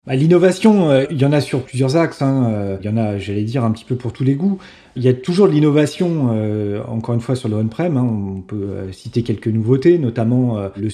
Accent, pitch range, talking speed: French, 110-135 Hz, 220 wpm